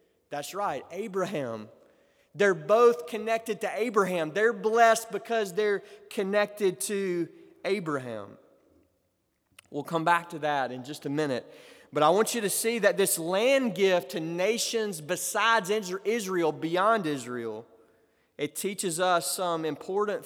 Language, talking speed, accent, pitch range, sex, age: English, 135 wpm, American, 170-230 Hz, male, 20-39